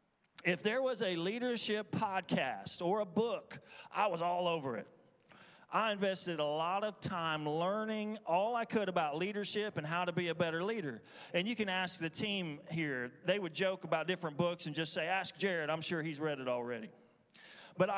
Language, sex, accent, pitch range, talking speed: English, male, American, 155-195 Hz, 195 wpm